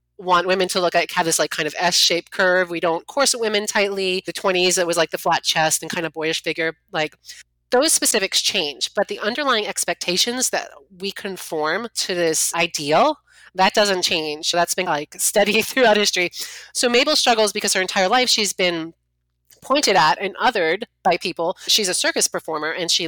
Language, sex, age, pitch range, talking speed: English, female, 30-49, 165-210 Hz, 195 wpm